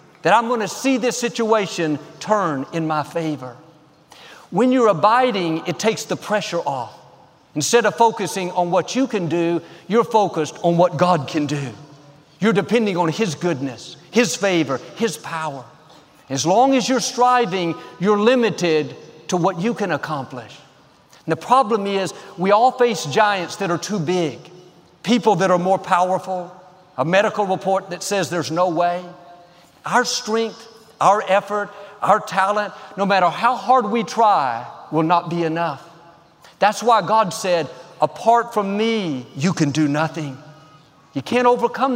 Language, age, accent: English, 50-69, American